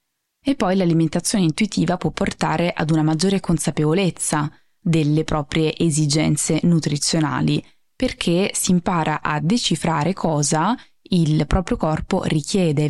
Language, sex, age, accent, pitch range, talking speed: Italian, female, 20-39, native, 155-195 Hz, 110 wpm